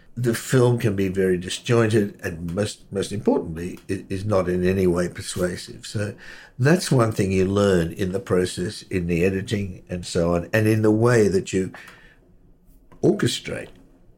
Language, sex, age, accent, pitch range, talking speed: English, male, 60-79, British, 90-105 Hz, 165 wpm